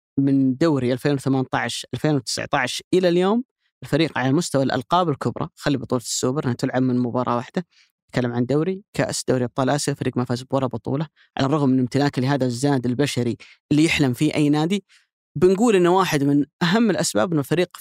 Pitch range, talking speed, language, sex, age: 130-170 Hz, 170 wpm, Arabic, female, 30-49